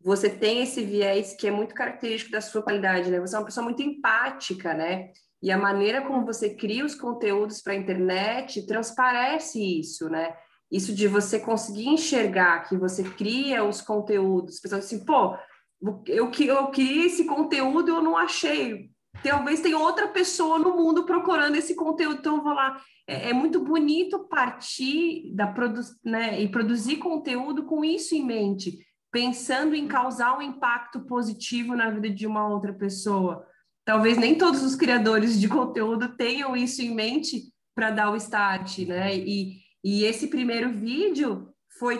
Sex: female